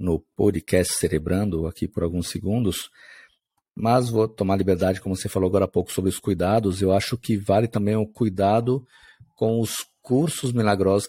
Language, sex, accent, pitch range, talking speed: Portuguese, male, Brazilian, 95-115 Hz, 170 wpm